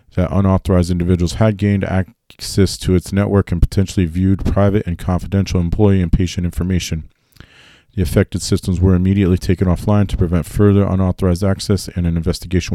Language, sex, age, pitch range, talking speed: English, male, 40-59, 85-100 Hz, 160 wpm